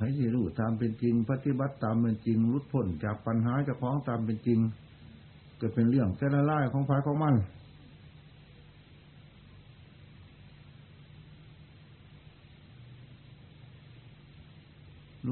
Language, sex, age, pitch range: Thai, male, 60-79, 115-140 Hz